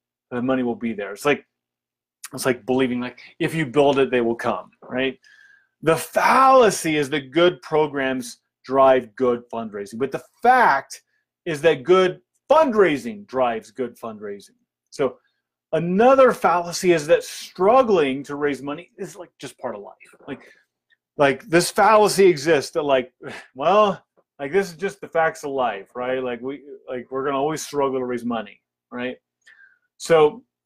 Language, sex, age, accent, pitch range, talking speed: English, male, 30-49, American, 130-205 Hz, 160 wpm